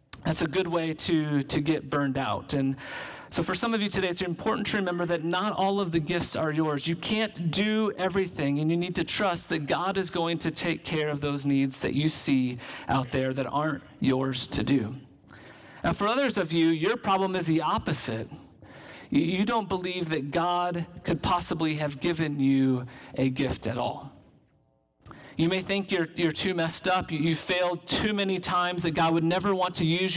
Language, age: English, 40-59